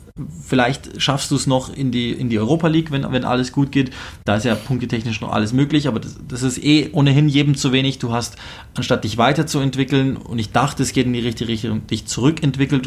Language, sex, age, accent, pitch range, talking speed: German, male, 20-39, German, 110-135 Hz, 220 wpm